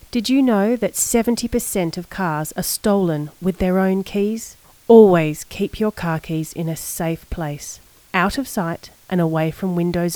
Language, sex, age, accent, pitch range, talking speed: English, female, 30-49, Australian, 160-220 Hz, 170 wpm